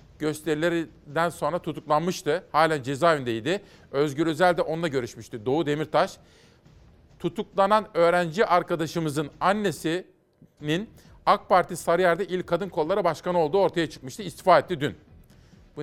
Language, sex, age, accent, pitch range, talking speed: Turkish, male, 50-69, native, 140-175 Hz, 115 wpm